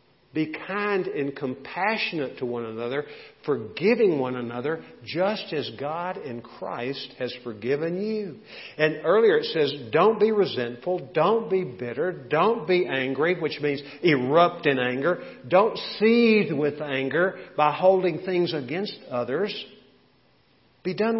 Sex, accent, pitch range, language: male, American, 120-175 Hz, English